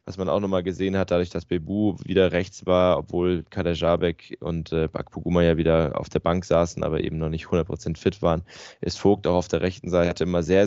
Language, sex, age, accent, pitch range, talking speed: German, male, 10-29, German, 80-90 Hz, 220 wpm